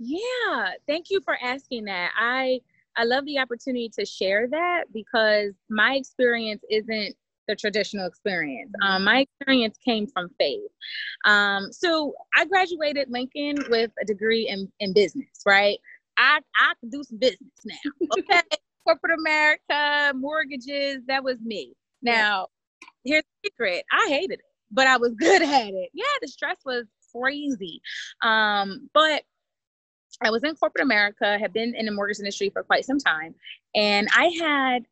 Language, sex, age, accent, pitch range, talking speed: English, female, 20-39, American, 205-275 Hz, 155 wpm